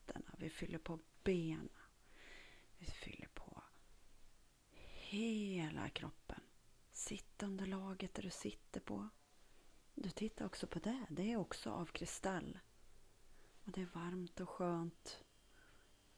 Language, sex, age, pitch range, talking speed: Swedish, female, 30-49, 155-195 Hz, 120 wpm